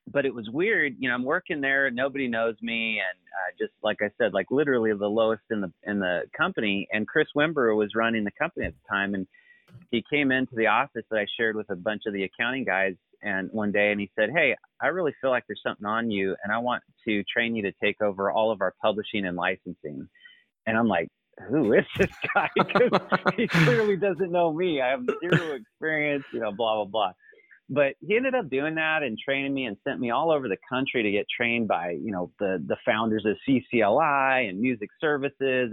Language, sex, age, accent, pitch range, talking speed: English, male, 30-49, American, 105-145 Hz, 225 wpm